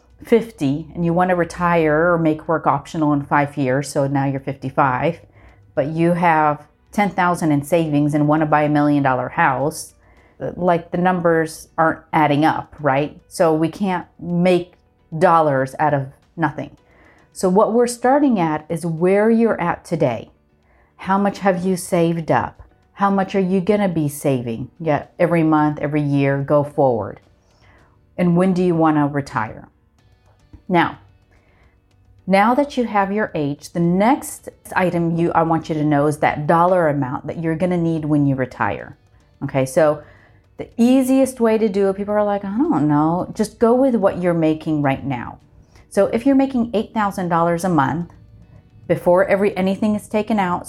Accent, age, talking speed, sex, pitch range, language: American, 40-59, 175 wpm, female, 145-190 Hz, English